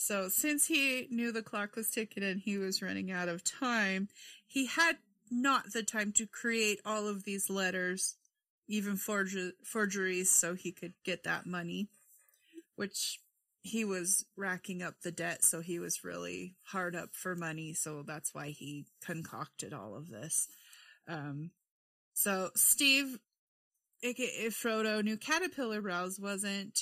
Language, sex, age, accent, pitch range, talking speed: English, female, 30-49, American, 180-235 Hz, 150 wpm